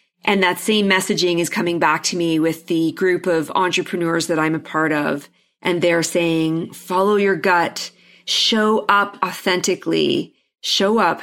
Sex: female